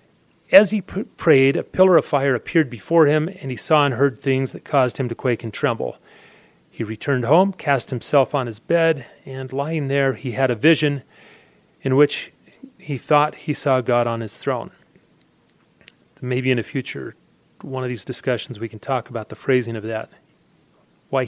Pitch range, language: 125-155 Hz, English